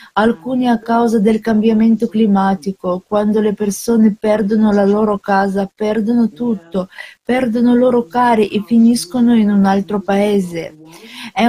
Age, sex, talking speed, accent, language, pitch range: 40-59, female, 135 wpm, native, Italian, 205-240 Hz